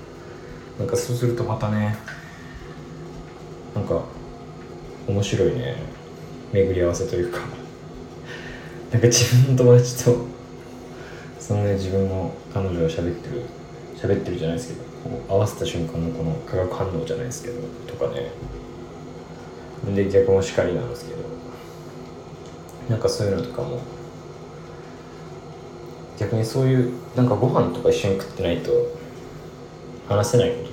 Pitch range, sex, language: 95-125 Hz, male, Japanese